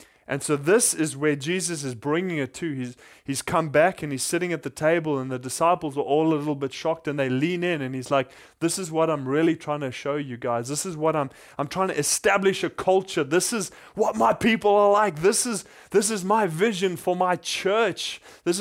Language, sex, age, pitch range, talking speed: English, male, 20-39, 140-185 Hz, 235 wpm